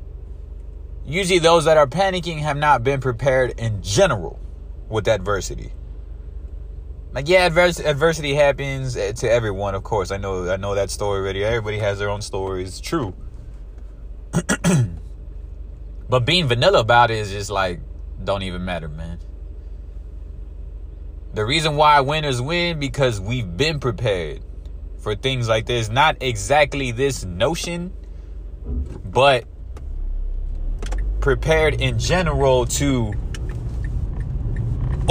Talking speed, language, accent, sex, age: 120 wpm, English, American, male, 20-39